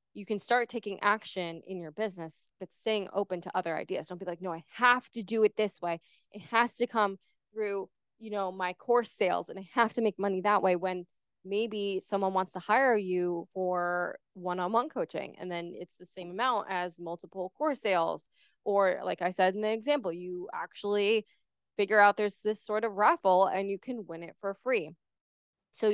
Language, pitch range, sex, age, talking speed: English, 185-225 Hz, female, 20-39, 200 wpm